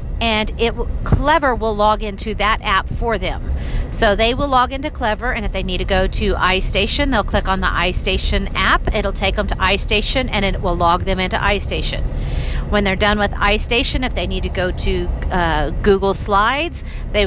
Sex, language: female, English